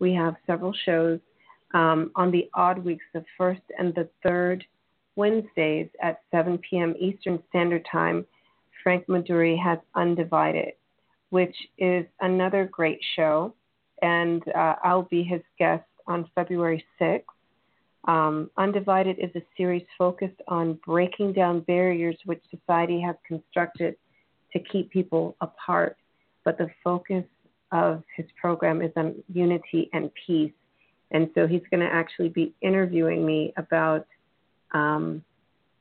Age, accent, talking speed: 40-59, American, 130 wpm